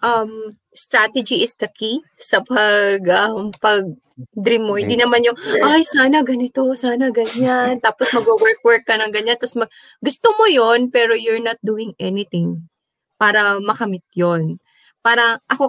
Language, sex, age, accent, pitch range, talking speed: Filipino, female, 20-39, native, 195-270 Hz, 145 wpm